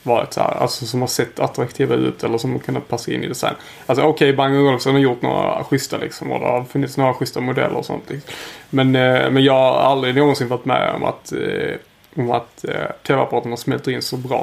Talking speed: 215 wpm